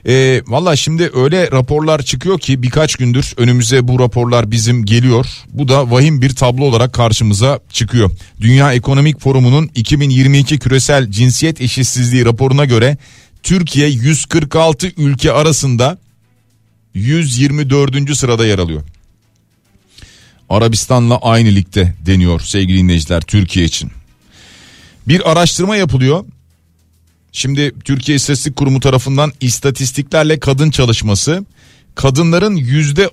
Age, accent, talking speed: 40-59, native, 105 wpm